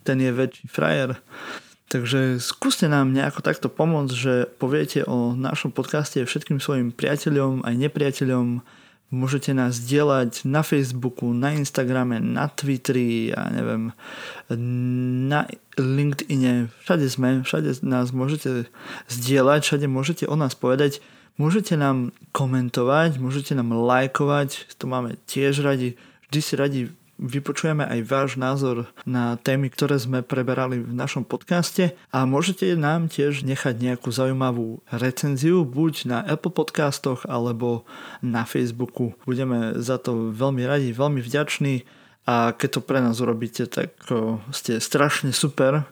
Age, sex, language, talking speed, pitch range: 20-39, male, Slovak, 130 wpm, 125-145 Hz